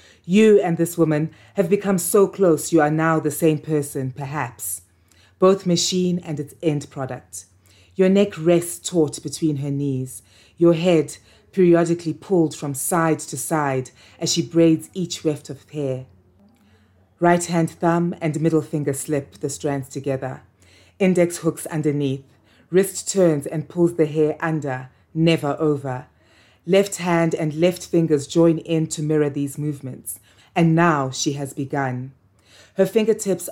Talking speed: 150 wpm